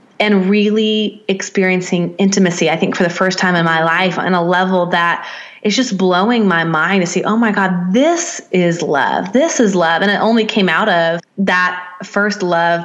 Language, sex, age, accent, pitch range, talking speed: English, female, 20-39, American, 175-205 Hz, 195 wpm